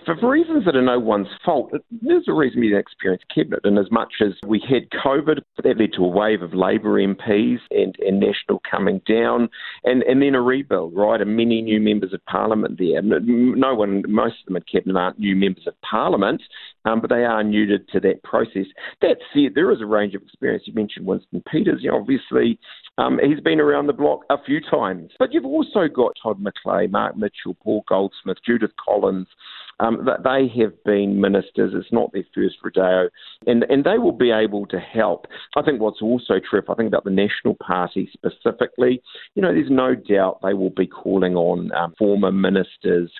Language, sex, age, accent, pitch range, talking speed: English, male, 50-69, Australian, 95-125 Hz, 205 wpm